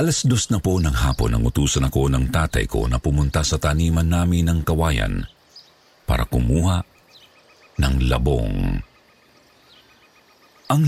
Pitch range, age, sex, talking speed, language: 75-110 Hz, 50-69, male, 130 wpm, Filipino